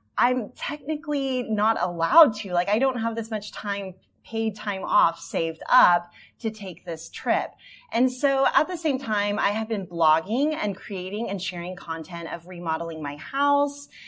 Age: 30-49